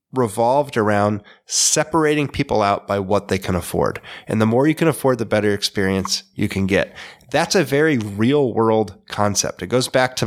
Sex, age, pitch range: male, 30-49, 105-140 Hz